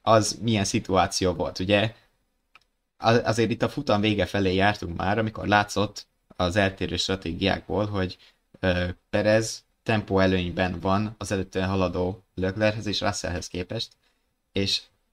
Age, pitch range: 20-39, 95-110 Hz